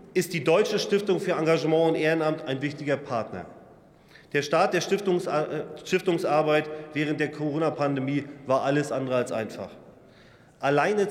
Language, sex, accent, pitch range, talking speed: German, male, German, 140-170 Hz, 130 wpm